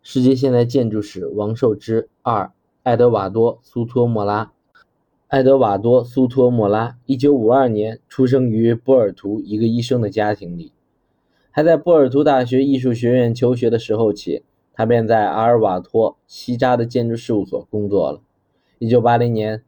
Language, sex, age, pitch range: Chinese, male, 20-39, 110-130 Hz